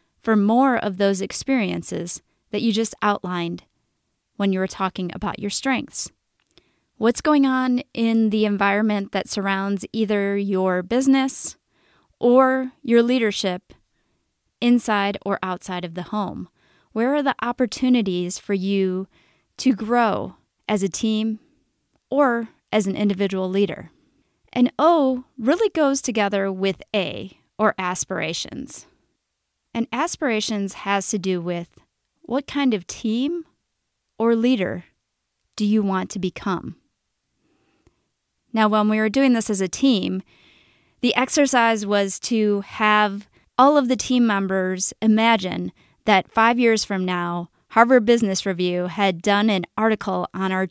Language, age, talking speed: English, 30-49, 135 wpm